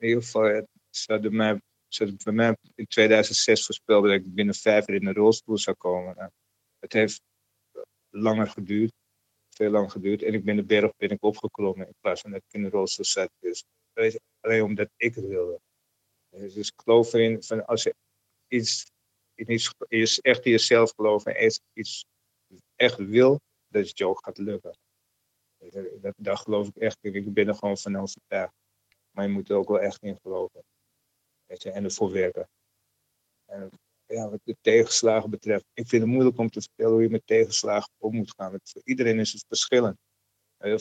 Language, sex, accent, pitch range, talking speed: Dutch, male, Dutch, 105-120 Hz, 195 wpm